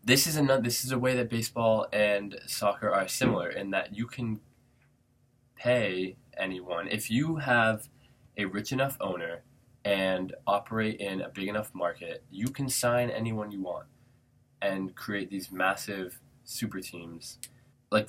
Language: English